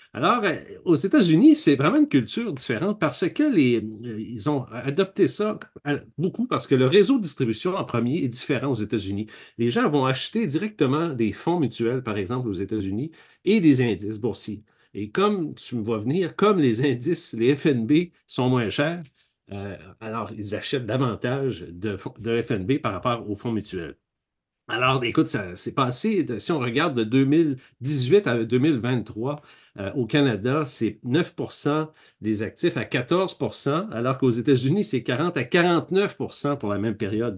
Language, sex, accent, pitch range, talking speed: French, male, Canadian, 110-155 Hz, 160 wpm